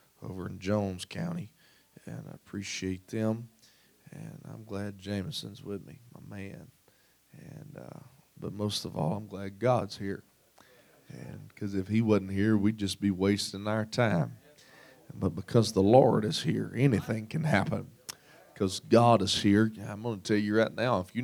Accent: American